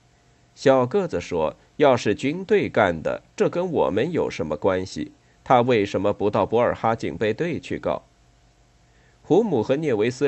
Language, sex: Chinese, male